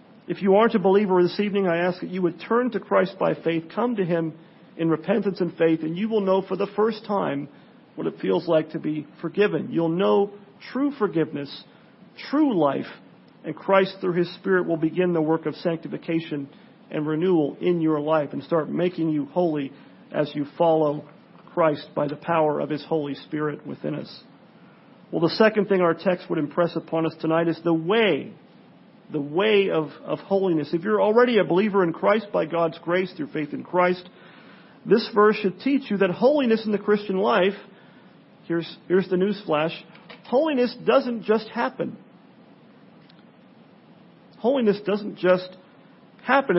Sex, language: male, English